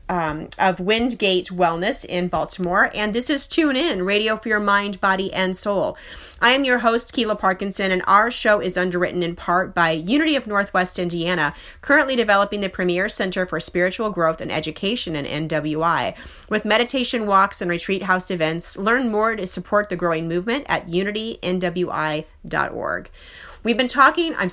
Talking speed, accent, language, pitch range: 165 wpm, American, English, 175-210 Hz